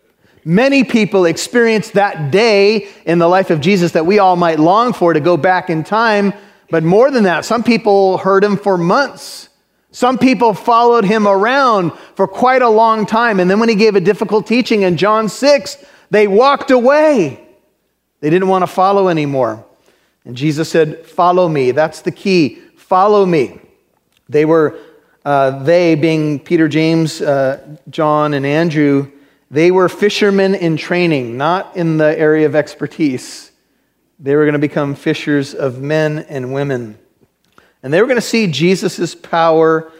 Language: English